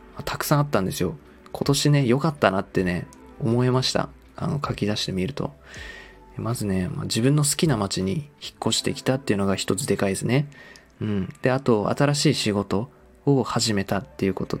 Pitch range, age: 100-120 Hz, 20-39